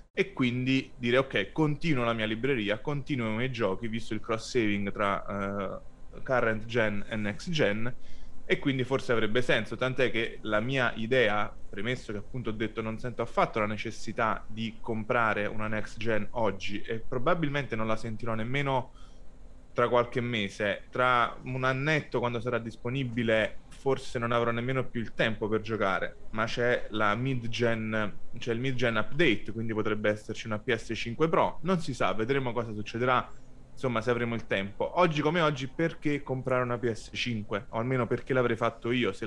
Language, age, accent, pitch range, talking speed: Italian, 20-39, native, 110-130 Hz, 165 wpm